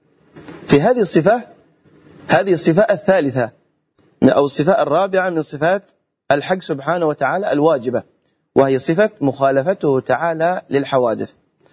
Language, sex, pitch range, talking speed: Arabic, male, 135-175 Hz, 100 wpm